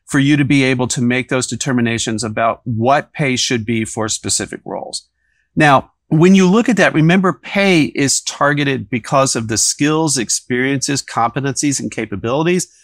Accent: American